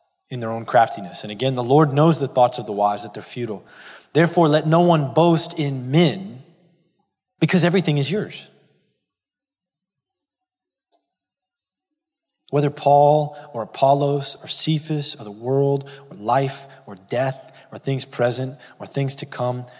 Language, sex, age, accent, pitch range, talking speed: English, male, 30-49, American, 130-180 Hz, 145 wpm